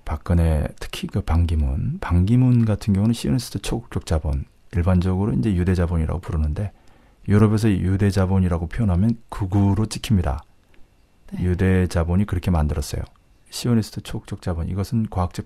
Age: 40-59